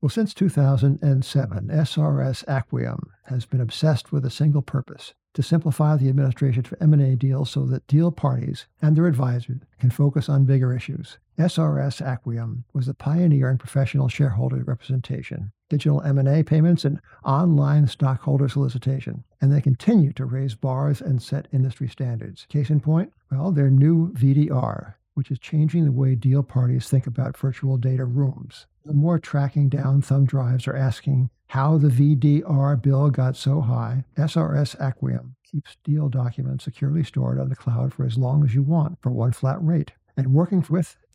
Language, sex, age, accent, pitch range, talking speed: English, male, 60-79, American, 130-150 Hz, 165 wpm